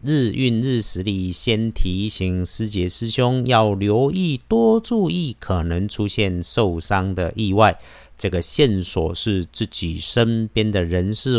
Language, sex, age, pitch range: Chinese, male, 50-69, 95-120 Hz